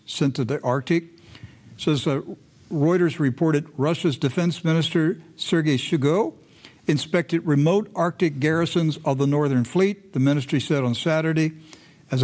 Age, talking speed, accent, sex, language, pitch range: 60-79, 130 wpm, American, male, English, 135-165 Hz